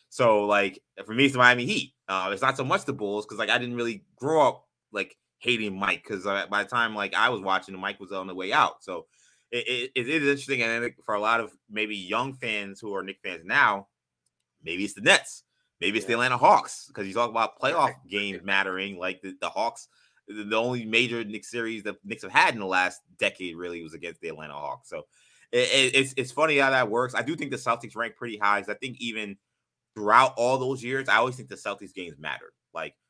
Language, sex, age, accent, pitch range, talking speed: English, male, 20-39, American, 95-120 Hz, 240 wpm